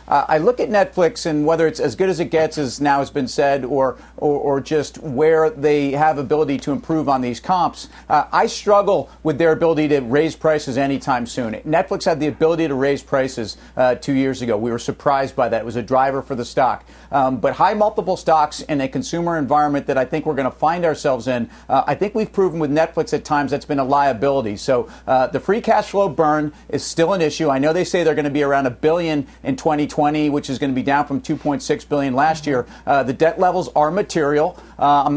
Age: 40-59